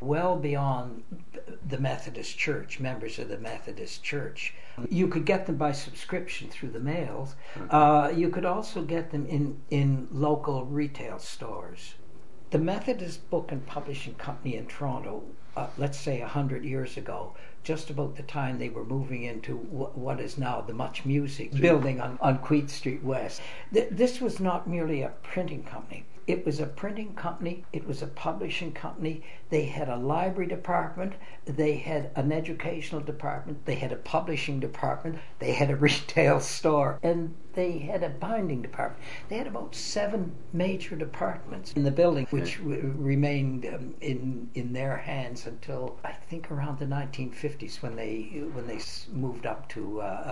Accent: American